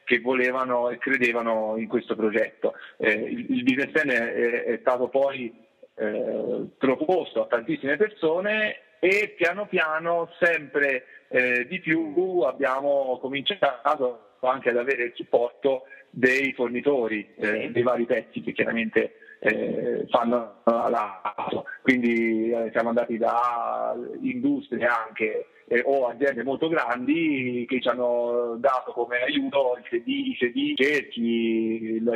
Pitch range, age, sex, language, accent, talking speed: 120-165 Hz, 40-59, male, Italian, native, 125 wpm